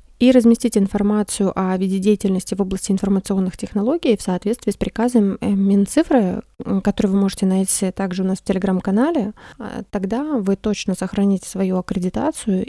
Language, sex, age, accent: Russian, female, 20-39, native